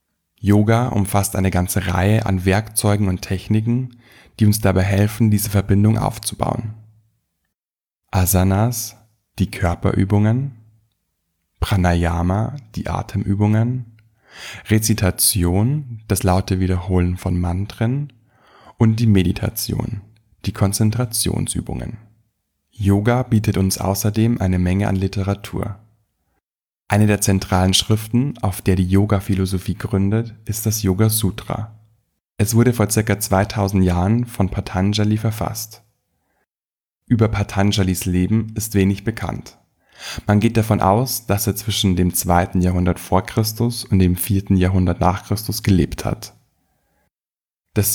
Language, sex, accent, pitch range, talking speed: German, male, German, 95-110 Hz, 115 wpm